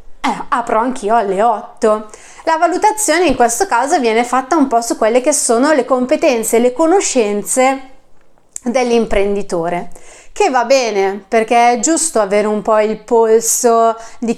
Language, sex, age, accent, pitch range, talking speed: Italian, female, 30-49, native, 210-275 Hz, 140 wpm